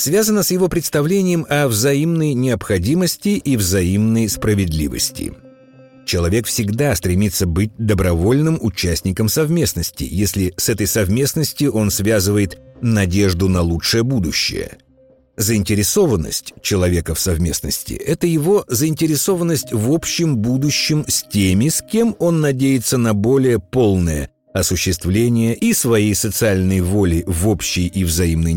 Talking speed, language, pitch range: 115 wpm, Russian, 95-140 Hz